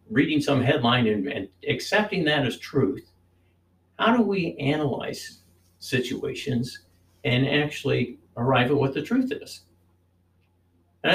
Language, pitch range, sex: English, 90-140 Hz, male